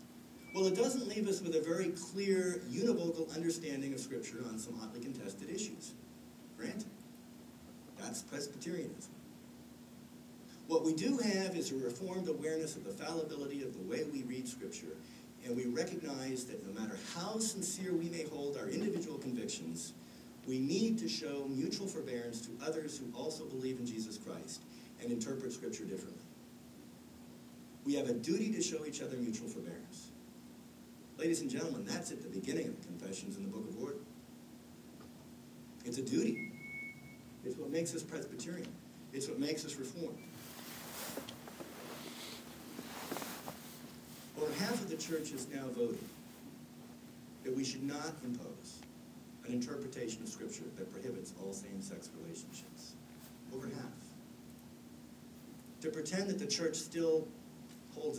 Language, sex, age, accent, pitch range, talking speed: English, male, 50-69, American, 125-175 Hz, 140 wpm